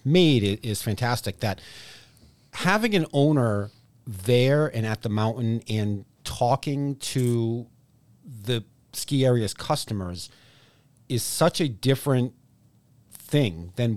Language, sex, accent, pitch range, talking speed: English, male, American, 105-135 Hz, 105 wpm